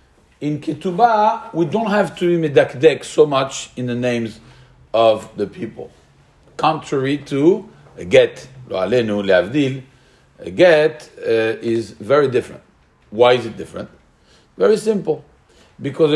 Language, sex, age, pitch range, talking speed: English, male, 50-69, 135-205 Hz, 135 wpm